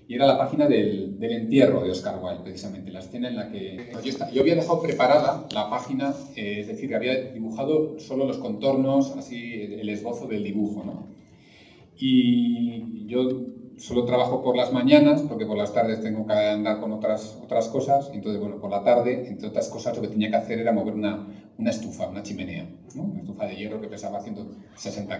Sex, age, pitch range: male, 40-59, 100-135 Hz